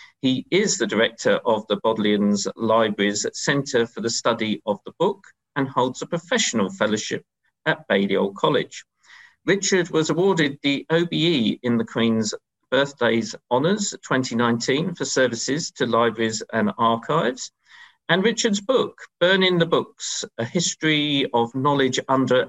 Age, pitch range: 50-69, 110-160 Hz